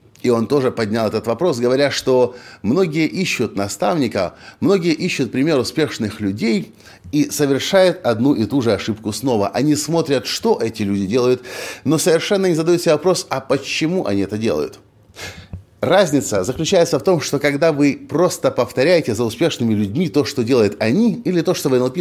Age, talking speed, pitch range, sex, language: 30-49, 170 wpm, 105-155 Hz, male, Russian